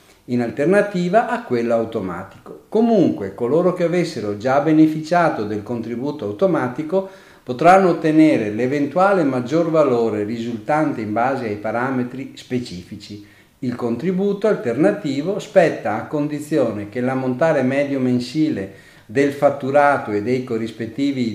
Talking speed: 115 wpm